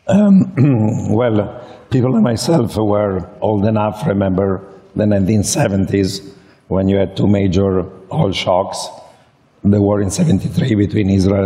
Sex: male